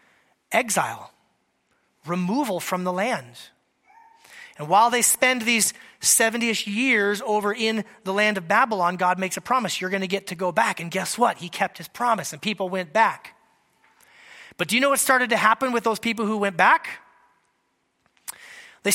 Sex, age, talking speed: male, 30-49, 175 wpm